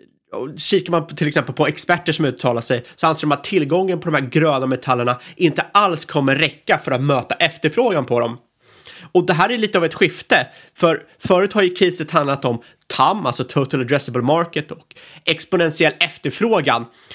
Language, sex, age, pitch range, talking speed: Swedish, male, 30-49, 135-170 Hz, 185 wpm